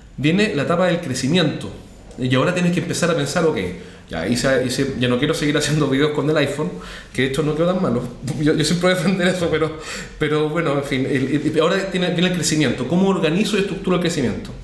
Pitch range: 135-185 Hz